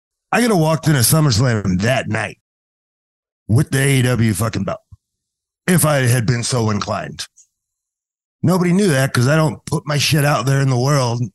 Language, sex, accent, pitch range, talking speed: English, male, American, 110-135 Hz, 180 wpm